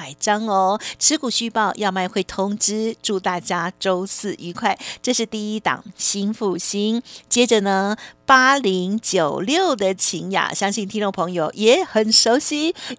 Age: 50-69